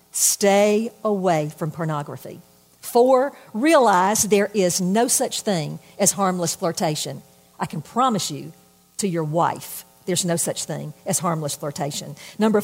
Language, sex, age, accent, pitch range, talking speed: English, female, 50-69, American, 170-240 Hz, 140 wpm